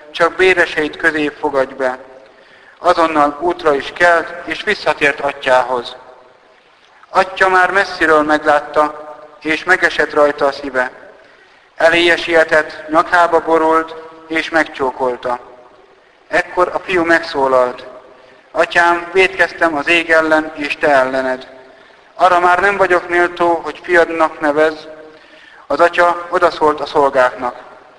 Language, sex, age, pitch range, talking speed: Hungarian, male, 50-69, 145-170 Hz, 110 wpm